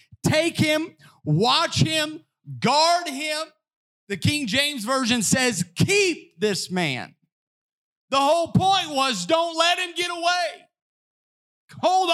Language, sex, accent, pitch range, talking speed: English, male, American, 185-260 Hz, 120 wpm